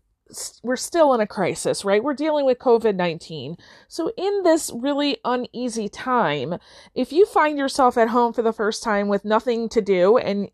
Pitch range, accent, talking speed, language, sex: 205-270 Hz, American, 175 wpm, English, female